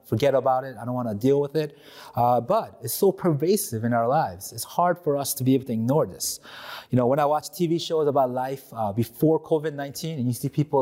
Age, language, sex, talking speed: 30-49, English, male, 245 wpm